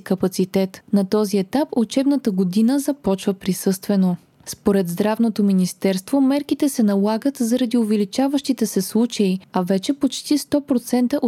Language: Bulgarian